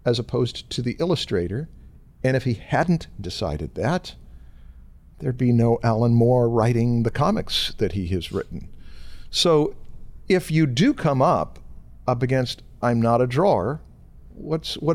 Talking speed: 150 wpm